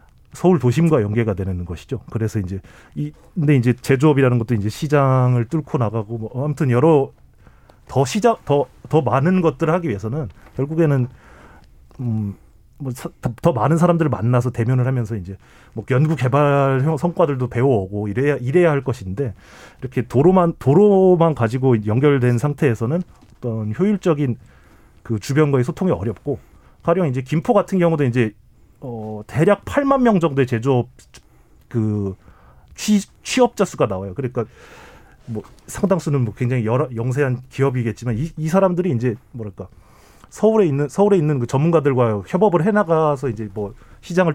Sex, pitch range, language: male, 115-160 Hz, Korean